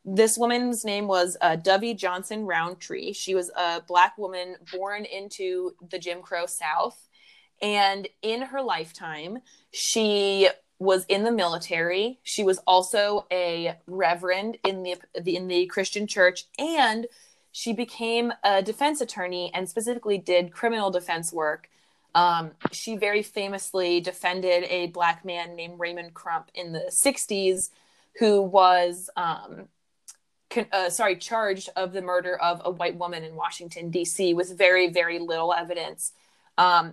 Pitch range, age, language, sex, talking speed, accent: 175-205 Hz, 20-39, English, female, 145 wpm, American